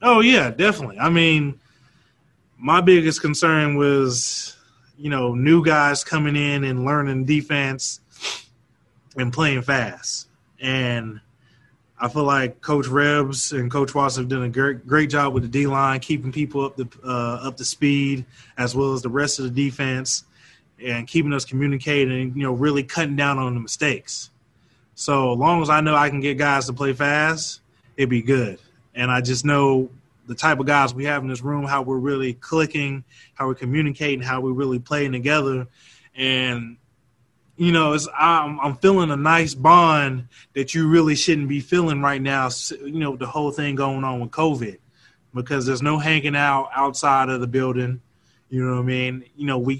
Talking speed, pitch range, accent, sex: 180 wpm, 130-150 Hz, American, male